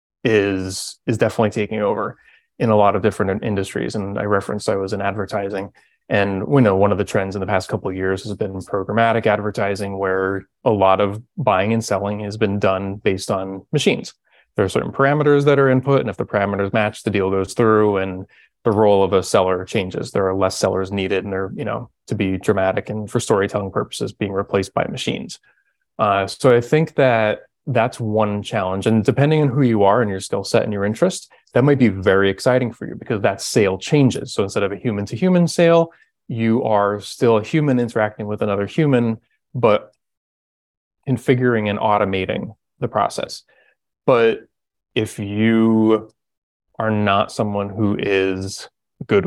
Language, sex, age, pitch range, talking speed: English, male, 20-39, 95-115 Hz, 190 wpm